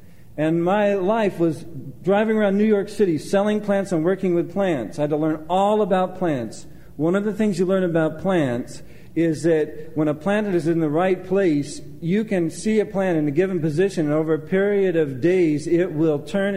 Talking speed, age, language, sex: 210 wpm, 50-69, English, male